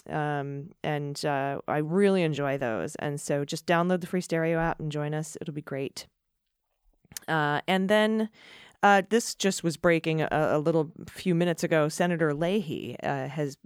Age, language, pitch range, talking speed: 30-49, English, 145-180 Hz, 170 wpm